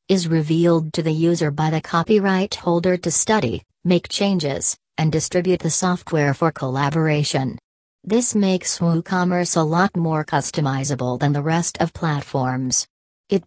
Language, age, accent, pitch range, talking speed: English, 40-59, American, 145-175 Hz, 145 wpm